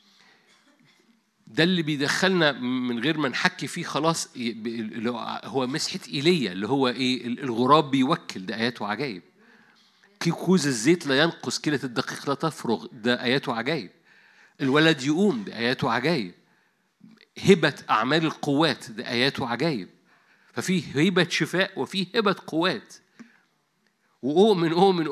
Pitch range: 130-185 Hz